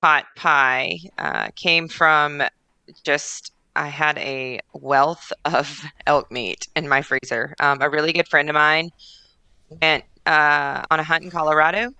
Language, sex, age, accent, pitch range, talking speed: English, female, 30-49, American, 145-165 Hz, 150 wpm